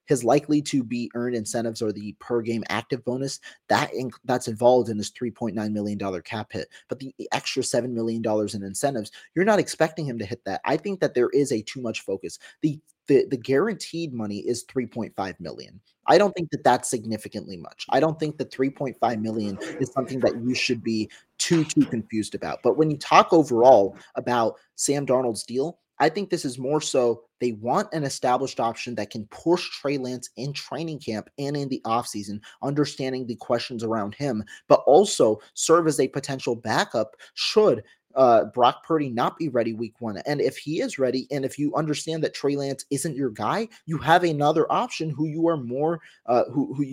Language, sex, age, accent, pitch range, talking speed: English, male, 30-49, American, 115-150 Hz, 195 wpm